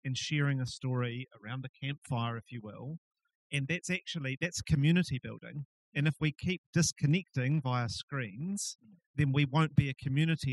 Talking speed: 165 wpm